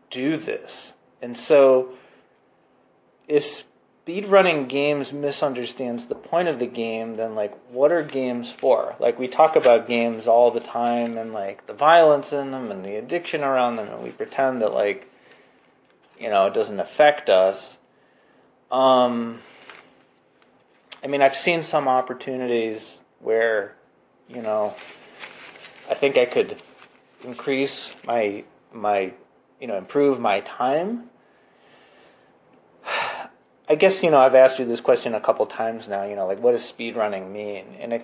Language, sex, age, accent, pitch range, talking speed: English, male, 30-49, American, 110-145 Hz, 145 wpm